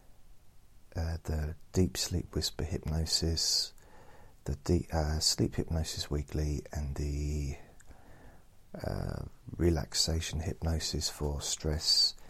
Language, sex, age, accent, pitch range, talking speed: English, male, 40-59, British, 80-100 Hz, 90 wpm